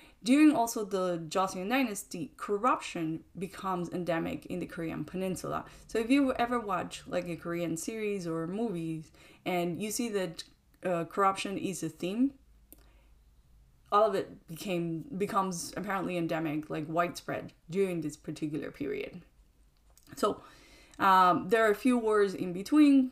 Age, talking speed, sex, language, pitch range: 20-39, 140 wpm, female, English, 165-210 Hz